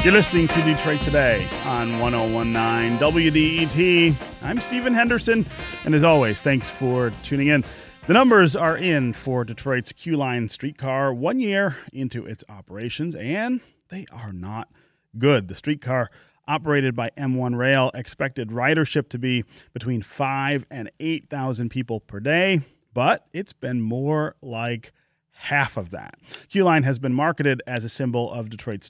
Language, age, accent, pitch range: English, 30-49, American, 120-160 Hz